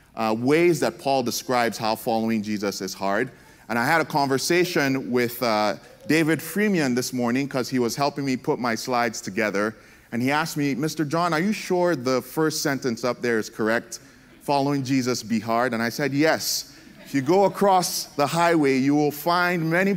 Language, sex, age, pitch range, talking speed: English, male, 30-49, 120-160 Hz, 190 wpm